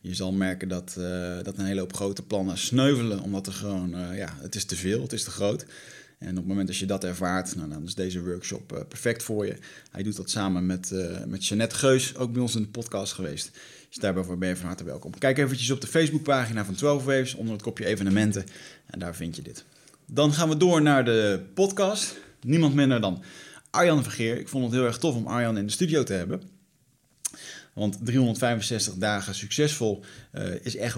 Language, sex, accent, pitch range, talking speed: Dutch, male, Dutch, 95-125 Hz, 220 wpm